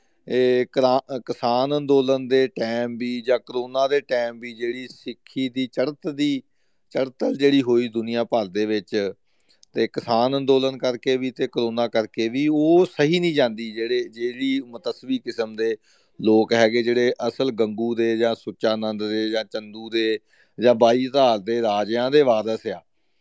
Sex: male